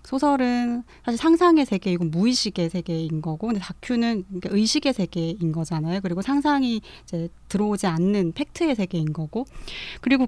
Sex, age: female, 30-49